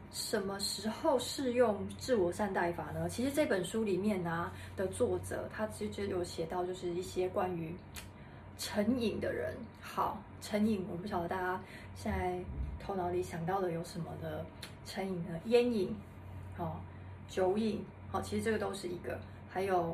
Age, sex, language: 20-39, female, Chinese